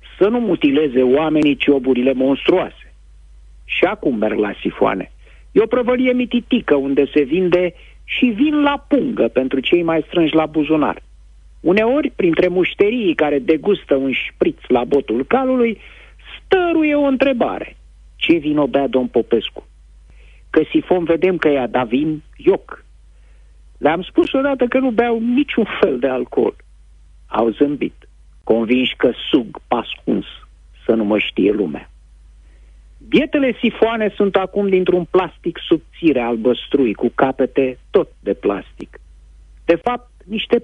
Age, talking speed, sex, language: 50-69, 135 wpm, male, Romanian